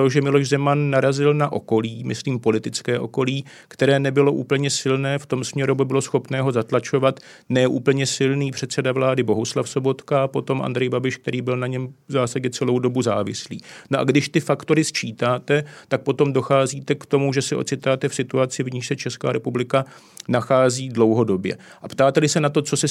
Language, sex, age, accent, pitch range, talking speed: Czech, male, 40-59, native, 125-140 Hz, 185 wpm